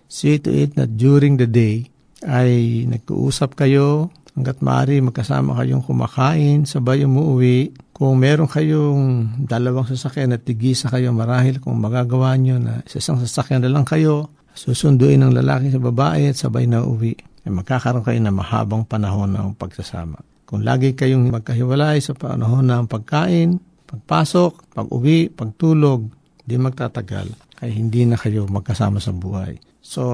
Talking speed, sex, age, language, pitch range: 145 wpm, male, 60-79, Filipino, 115-140 Hz